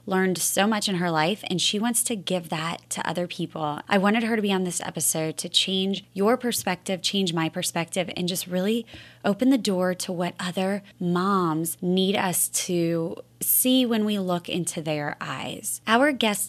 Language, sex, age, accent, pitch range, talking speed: English, female, 20-39, American, 170-205 Hz, 190 wpm